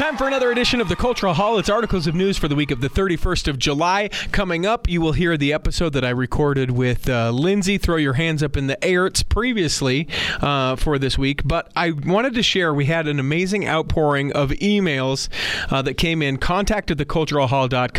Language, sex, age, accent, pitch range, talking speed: English, male, 40-59, American, 135-180 Hz, 220 wpm